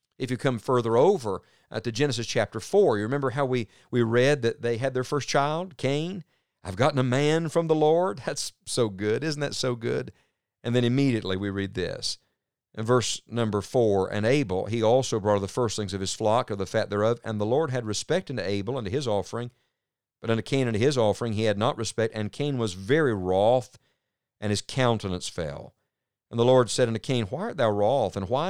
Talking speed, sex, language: 220 wpm, male, English